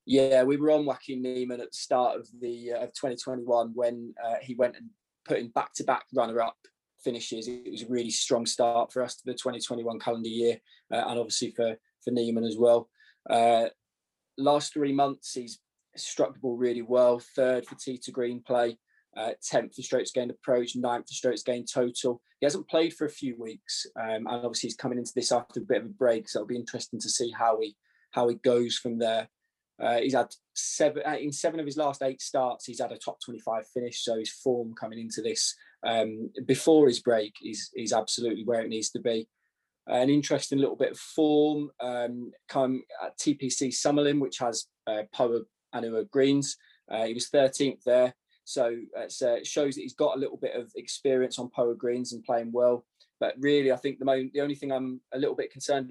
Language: English